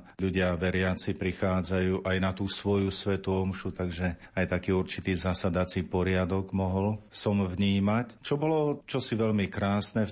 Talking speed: 150 wpm